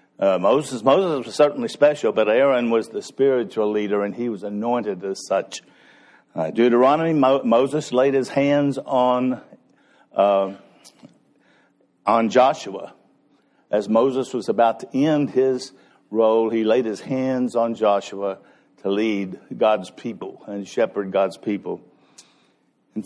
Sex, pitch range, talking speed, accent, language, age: male, 105-140 Hz, 135 wpm, American, English, 60-79